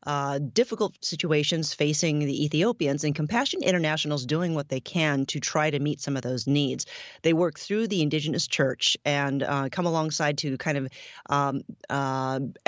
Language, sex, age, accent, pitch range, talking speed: English, female, 30-49, American, 140-160 Hz, 175 wpm